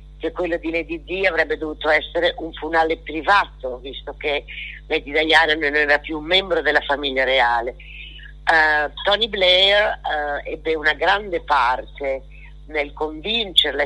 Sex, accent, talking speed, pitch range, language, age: female, native, 140 wpm, 150-175 Hz, Italian, 50-69